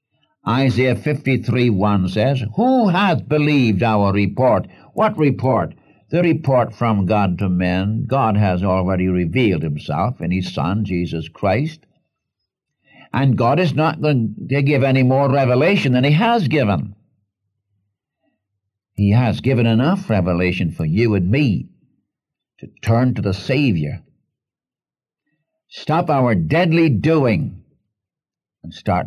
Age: 60-79